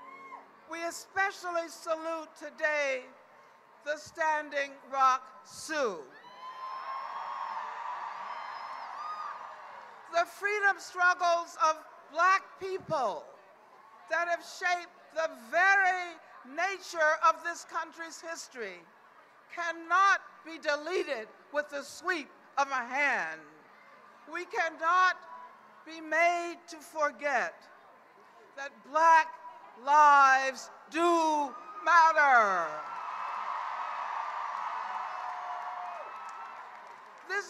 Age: 60-79